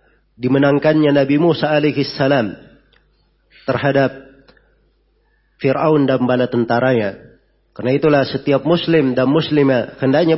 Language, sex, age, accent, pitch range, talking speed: Indonesian, male, 40-59, native, 135-155 Hz, 90 wpm